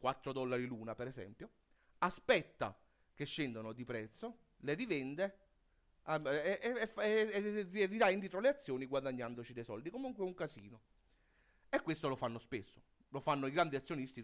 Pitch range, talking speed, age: 125-190 Hz, 150 wpm, 30-49